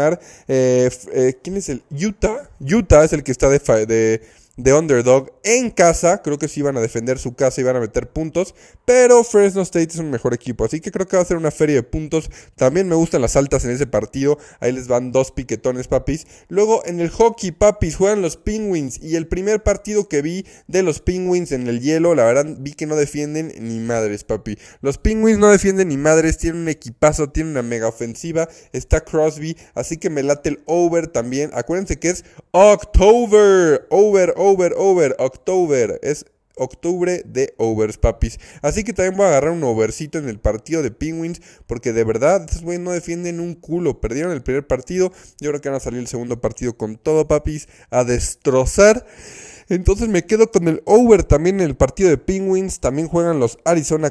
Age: 20-39